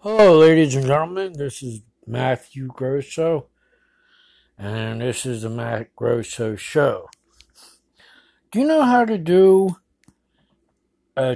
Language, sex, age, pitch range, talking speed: English, male, 60-79, 130-190 Hz, 115 wpm